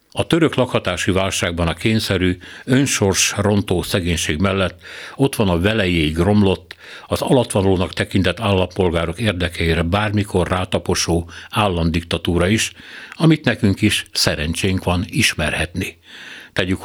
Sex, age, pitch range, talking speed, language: male, 60-79, 85-110 Hz, 110 wpm, Hungarian